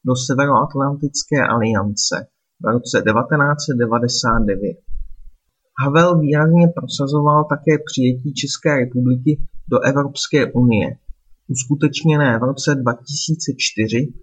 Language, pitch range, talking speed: Czech, 125-155 Hz, 85 wpm